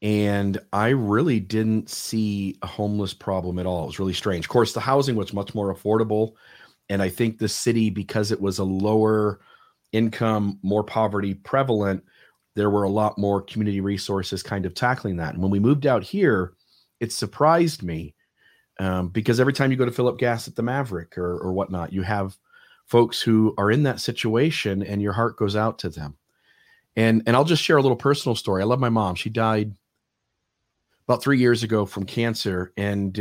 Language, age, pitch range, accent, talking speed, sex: English, 40-59, 95-115 Hz, American, 195 wpm, male